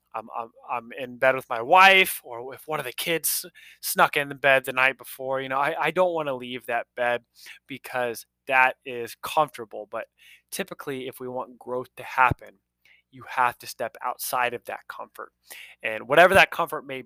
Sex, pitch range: male, 115-140 Hz